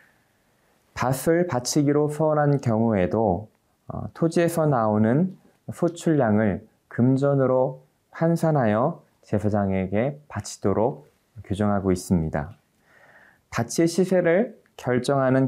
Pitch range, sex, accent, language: 105-150 Hz, male, native, Korean